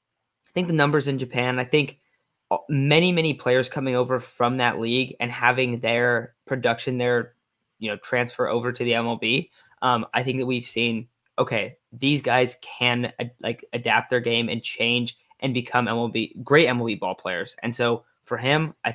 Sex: male